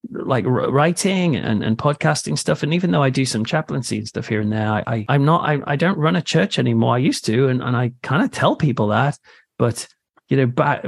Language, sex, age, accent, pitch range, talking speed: English, male, 30-49, British, 120-150 Hz, 250 wpm